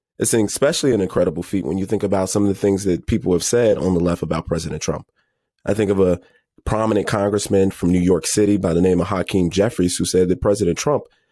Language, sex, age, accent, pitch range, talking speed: English, male, 30-49, American, 90-105 Hz, 235 wpm